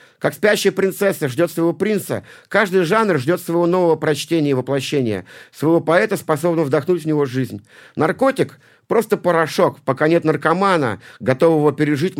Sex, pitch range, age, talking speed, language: male, 140-180 Hz, 50-69, 150 wpm, Russian